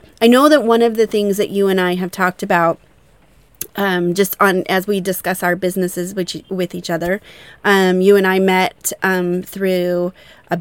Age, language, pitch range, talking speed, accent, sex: 30-49, English, 185-215 Hz, 190 wpm, American, female